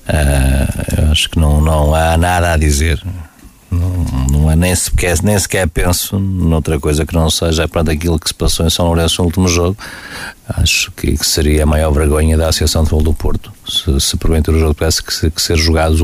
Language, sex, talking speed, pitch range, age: Portuguese, male, 215 wpm, 80-85 Hz, 50-69